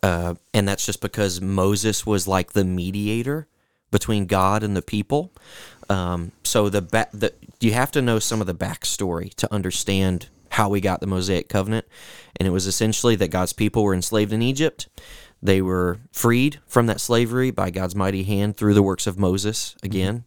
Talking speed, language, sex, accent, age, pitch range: 185 wpm, English, male, American, 30-49, 95-110 Hz